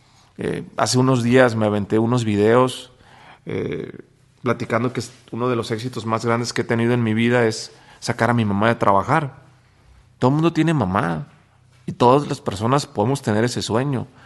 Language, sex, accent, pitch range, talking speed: English, male, Mexican, 115-140 Hz, 180 wpm